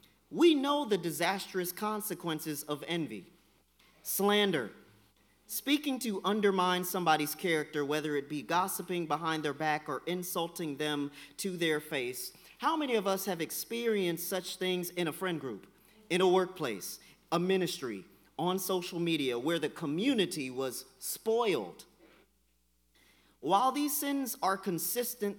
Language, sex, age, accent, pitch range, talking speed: English, male, 40-59, American, 170-230 Hz, 130 wpm